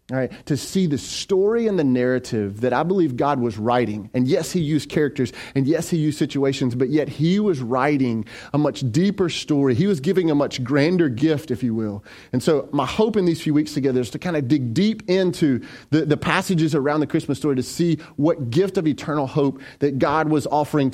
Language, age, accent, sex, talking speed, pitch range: English, 30-49, American, male, 220 wpm, 140-180 Hz